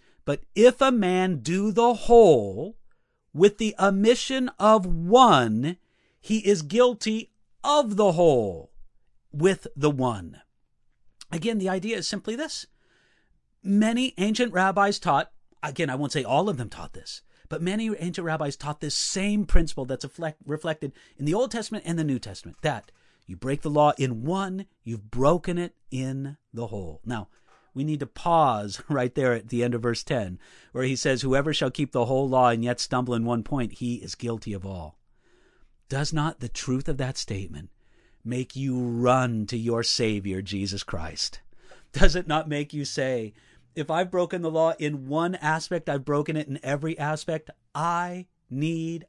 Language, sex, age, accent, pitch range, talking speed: English, male, 40-59, American, 125-185 Hz, 170 wpm